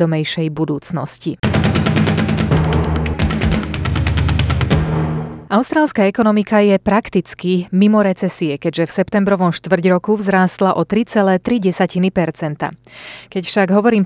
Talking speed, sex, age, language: 80 wpm, female, 30-49, Slovak